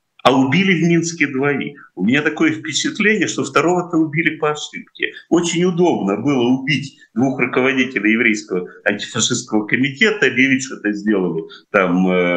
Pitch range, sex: 110-165 Hz, male